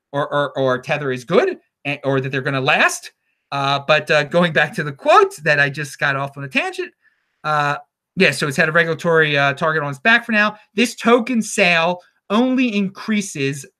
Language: English